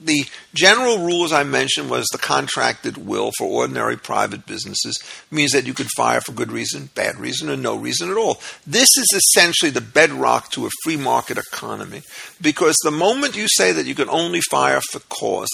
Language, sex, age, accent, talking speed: English, male, 50-69, American, 195 wpm